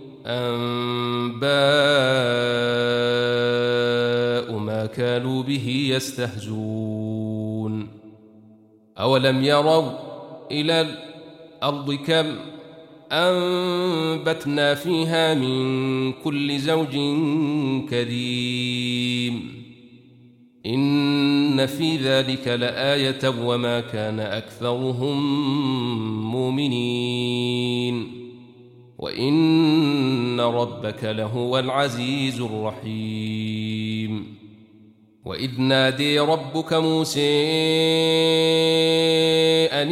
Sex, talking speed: male, 50 wpm